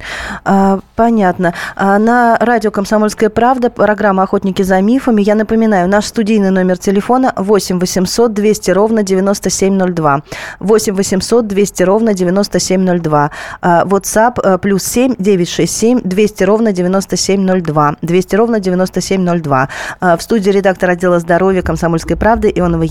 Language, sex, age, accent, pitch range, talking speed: Russian, female, 20-39, native, 175-220 Hz, 110 wpm